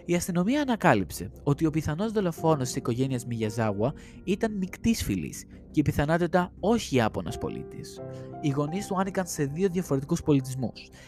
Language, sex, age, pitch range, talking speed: Greek, male, 20-39, 110-170 Hz, 140 wpm